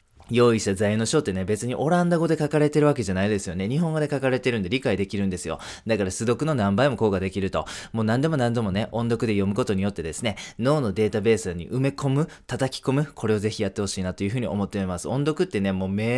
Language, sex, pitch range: Japanese, male, 100-150 Hz